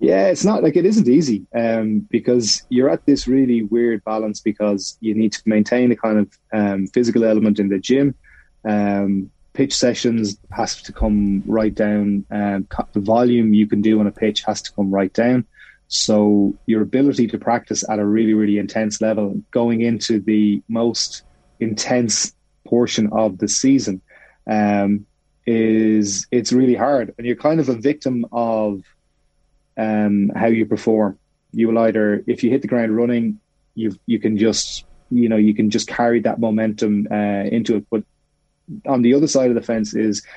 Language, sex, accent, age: English, male, Irish, 20-39